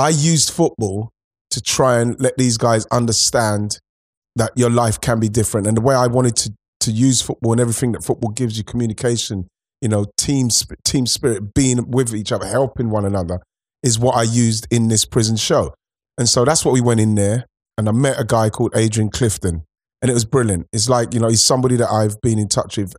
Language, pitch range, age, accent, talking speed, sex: English, 105-120 Hz, 30-49, British, 220 wpm, male